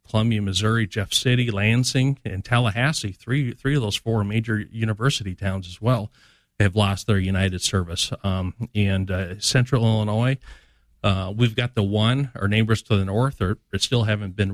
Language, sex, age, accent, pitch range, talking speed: English, male, 40-59, American, 95-110 Hz, 170 wpm